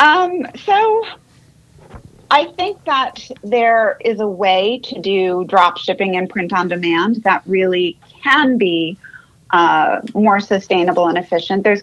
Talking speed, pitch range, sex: 135 wpm, 180-220 Hz, female